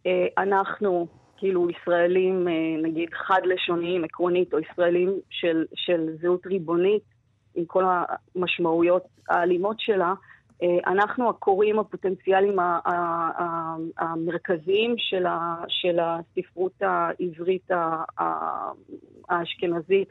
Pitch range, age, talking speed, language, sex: 175-205 Hz, 30-49, 75 wpm, Hebrew, female